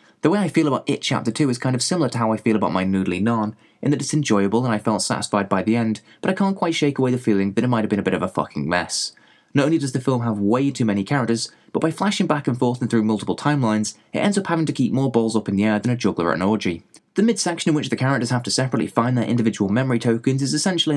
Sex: male